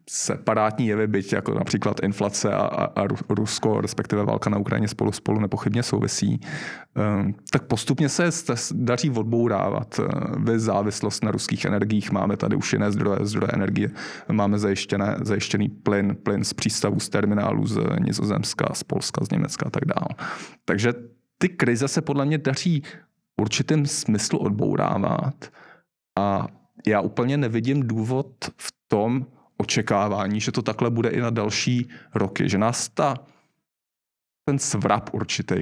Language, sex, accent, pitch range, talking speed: Czech, male, native, 105-140 Hz, 140 wpm